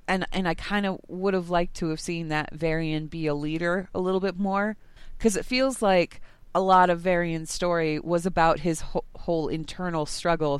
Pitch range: 155-190 Hz